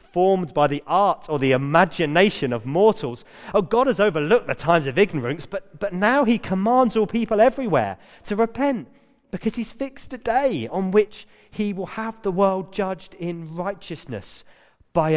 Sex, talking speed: male, 170 wpm